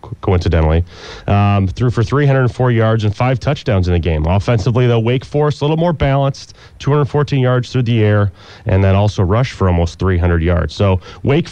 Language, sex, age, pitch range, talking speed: English, male, 30-49, 95-120 Hz, 180 wpm